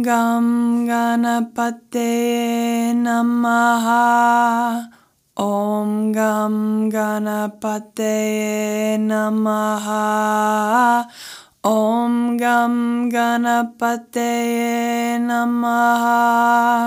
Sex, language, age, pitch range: female, English, 20-39, 215-235 Hz